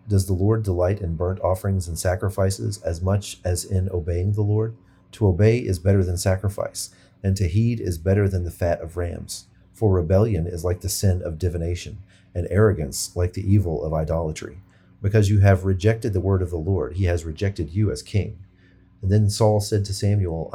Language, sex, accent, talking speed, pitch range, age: English, male, American, 200 wpm, 90-100 Hz, 40-59